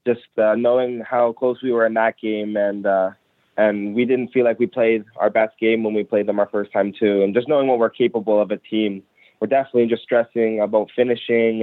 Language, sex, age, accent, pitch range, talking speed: English, male, 20-39, American, 105-115 Hz, 230 wpm